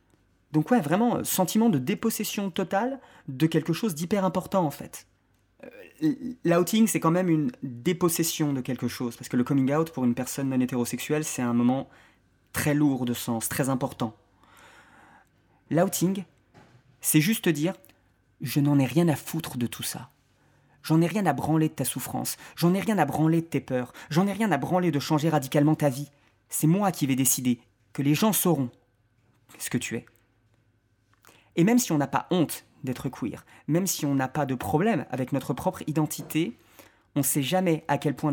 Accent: French